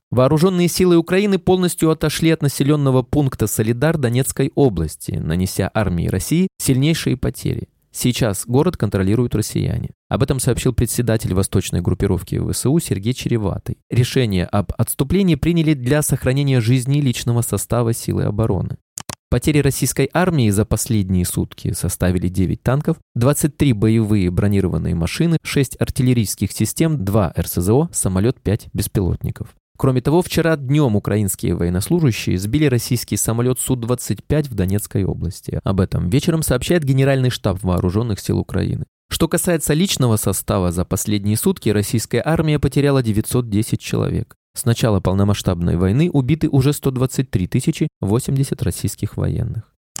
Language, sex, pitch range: Russian, male, 105-145 Hz